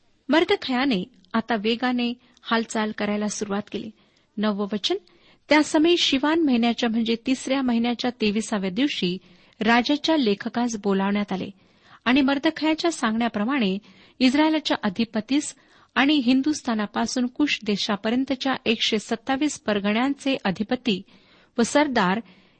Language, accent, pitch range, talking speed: Marathi, native, 210-275 Hz, 95 wpm